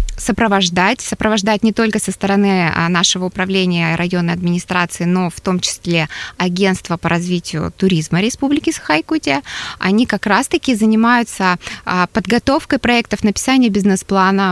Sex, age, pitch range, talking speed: female, 20-39, 180-225 Hz, 115 wpm